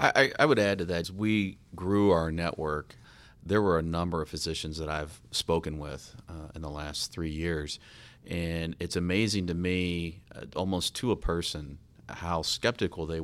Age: 40-59